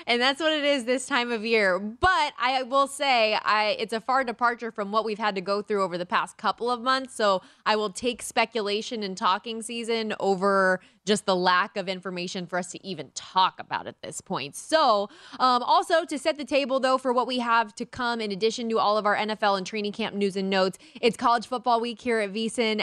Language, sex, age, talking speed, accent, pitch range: English, female, 20-39, 230 wpm, American, 190-230 Hz